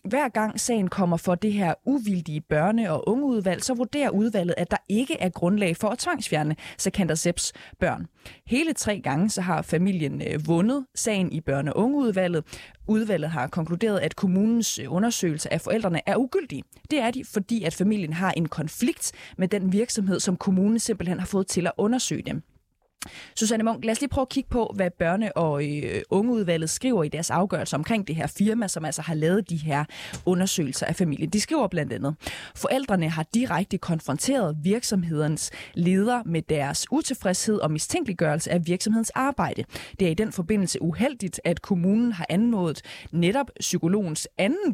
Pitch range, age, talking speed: 165-220 Hz, 20-39, 175 wpm